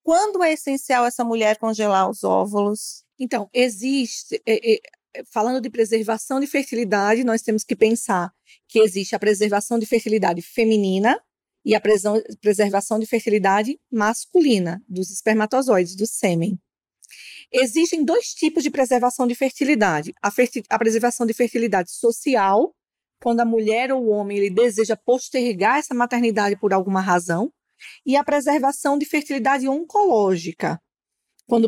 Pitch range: 215-275 Hz